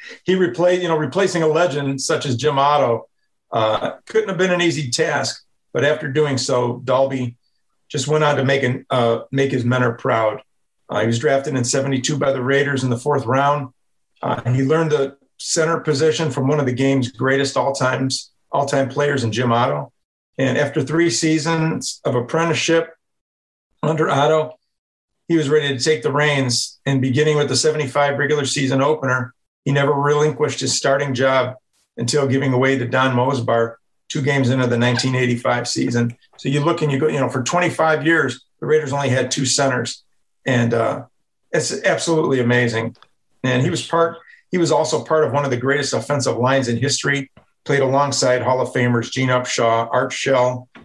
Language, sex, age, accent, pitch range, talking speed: English, male, 50-69, American, 125-150 Hz, 185 wpm